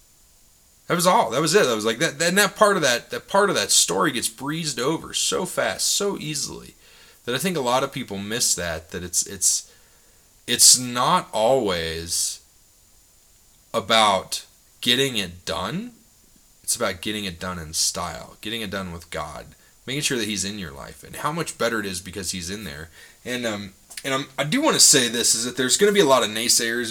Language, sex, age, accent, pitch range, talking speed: English, male, 30-49, American, 100-140 Hz, 210 wpm